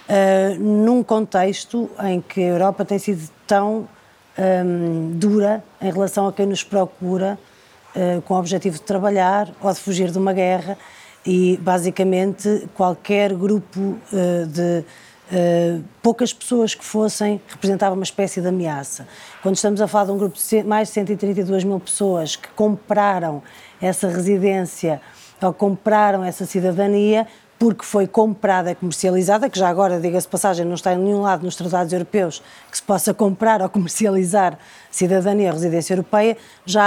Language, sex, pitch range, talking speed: Portuguese, female, 185-205 Hz, 155 wpm